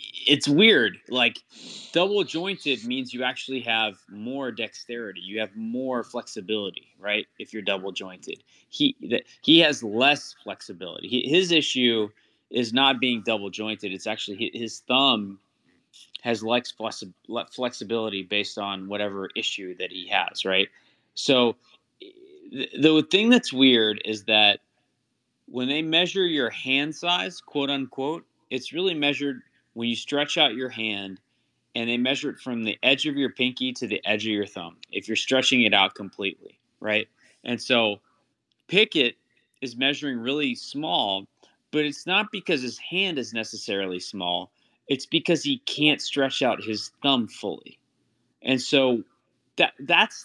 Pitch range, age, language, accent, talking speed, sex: 110-140 Hz, 30-49, English, American, 150 wpm, male